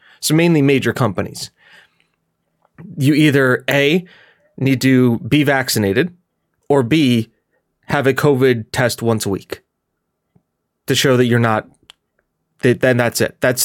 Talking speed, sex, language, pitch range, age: 130 wpm, male, English, 120-150 Hz, 30-49